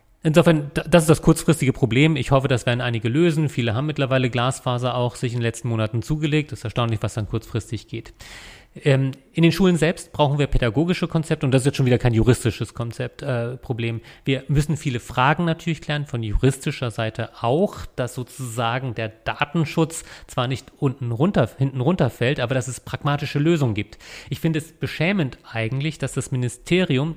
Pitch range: 120-155 Hz